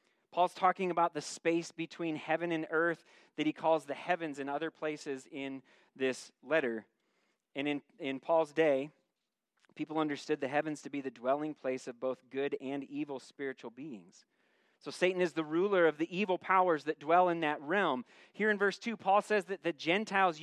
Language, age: English, 30-49